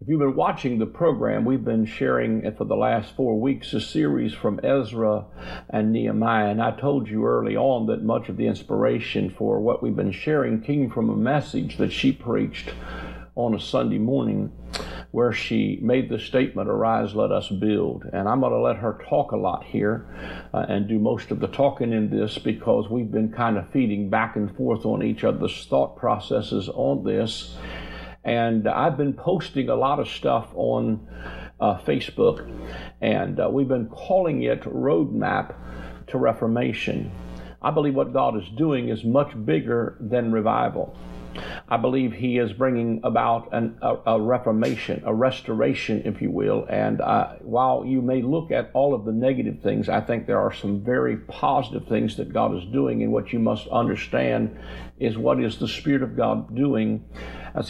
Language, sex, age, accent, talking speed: English, male, 50-69, American, 180 wpm